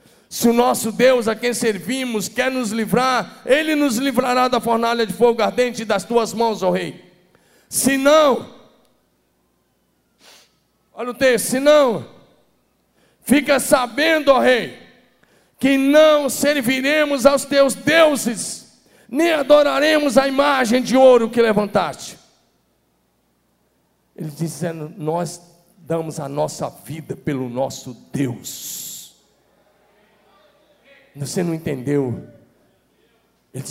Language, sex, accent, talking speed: Portuguese, male, Brazilian, 110 wpm